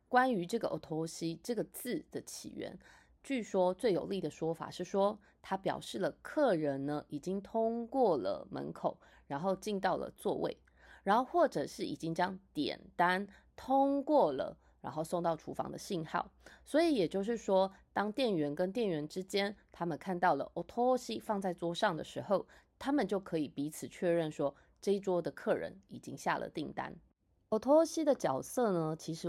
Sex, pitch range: female, 160-215 Hz